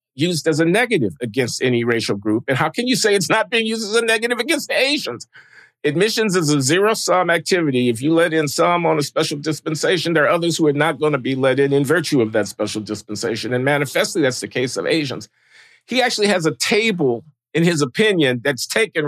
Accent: American